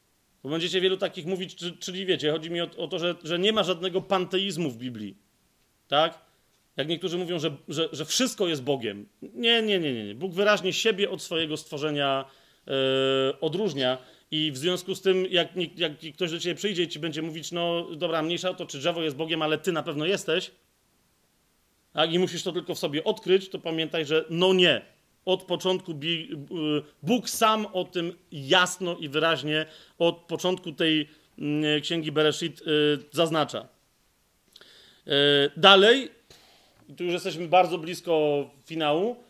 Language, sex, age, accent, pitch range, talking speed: Polish, male, 40-59, native, 155-190 Hz, 160 wpm